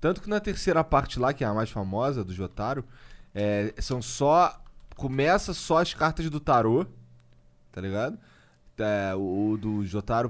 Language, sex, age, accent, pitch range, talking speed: Portuguese, male, 20-39, Brazilian, 100-140 Hz, 170 wpm